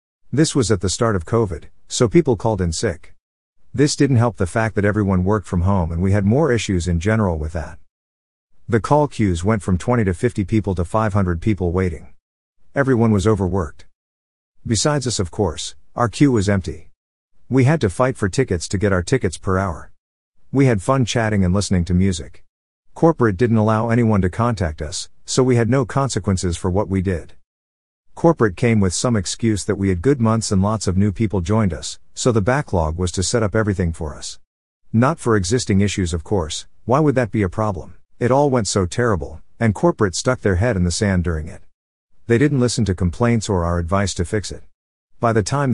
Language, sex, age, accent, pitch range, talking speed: English, male, 50-69, American, 90-115 Hz, 210 wpm